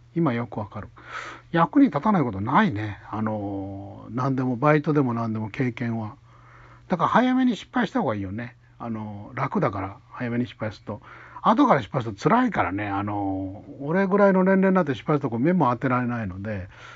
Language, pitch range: Japanese, 110-145 Hz